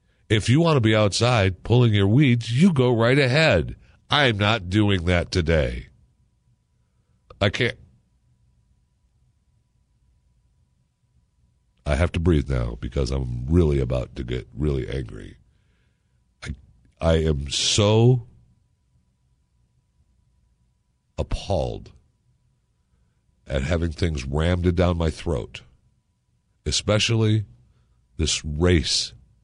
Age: 60-79